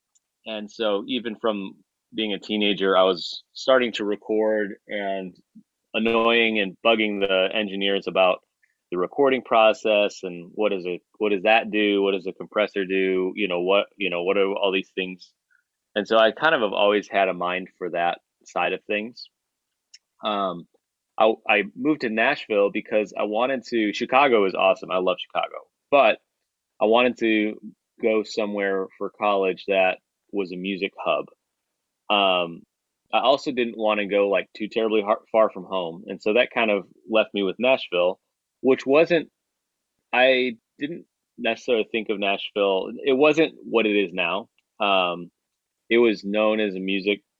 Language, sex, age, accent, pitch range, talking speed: English, male, 30-49, American, 95-110 Hz, 170 wpm